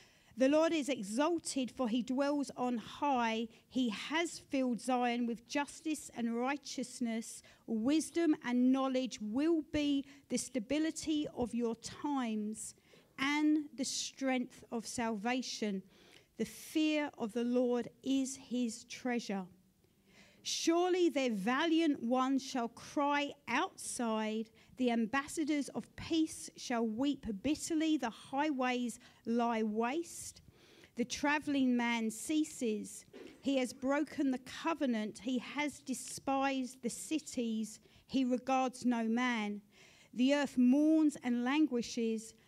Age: 50-69